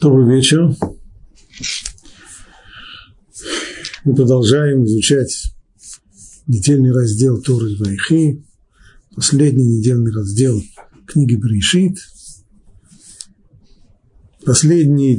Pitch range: 110-150 Hz